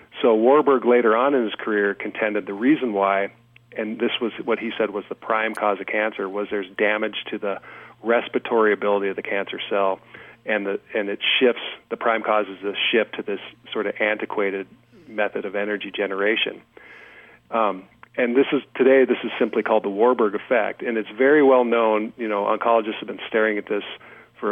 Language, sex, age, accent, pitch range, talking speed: English, male, 40-59, American, 100-115 Hz, 195 wpm